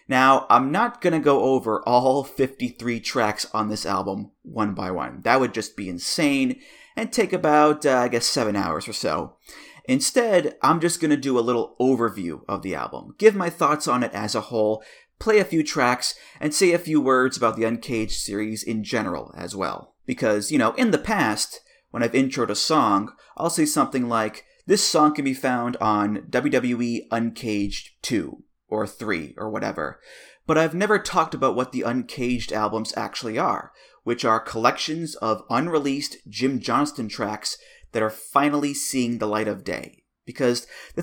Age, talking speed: 30-49, 185 wpm